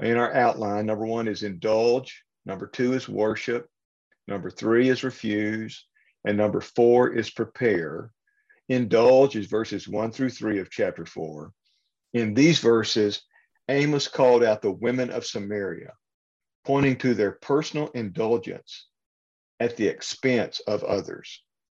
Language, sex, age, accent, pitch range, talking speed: English, male, 50-69, American, 105-130 Hz, 135 wpm